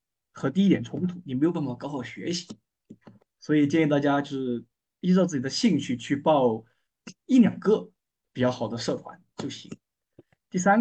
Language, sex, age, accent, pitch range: Chinese, male, 20-39, native, 120-175 Hz